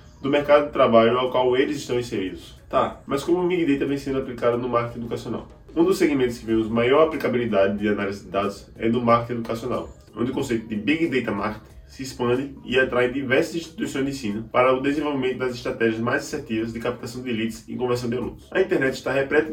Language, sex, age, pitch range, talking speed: Portuguese, male, 10-29, 115-135 Hz, 215 wpm